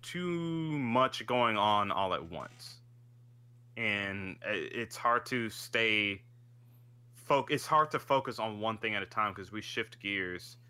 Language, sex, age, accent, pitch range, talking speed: English, male, 20-39, American, 105-120 Hz, 150 wpm